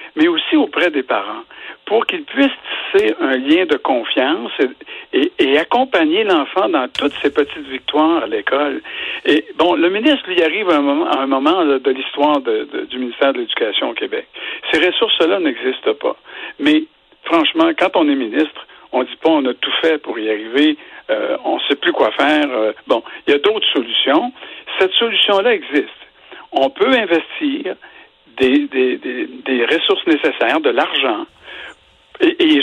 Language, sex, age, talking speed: French, male, 60-79, 180 wpm